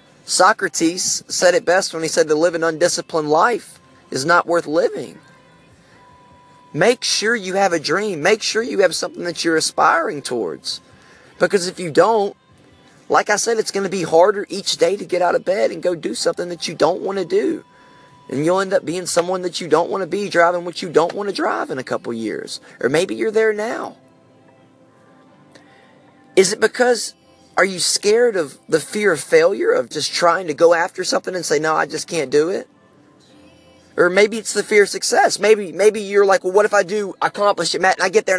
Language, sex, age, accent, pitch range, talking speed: English, male, 30-49, American, 170-220 Hz, 215 wpm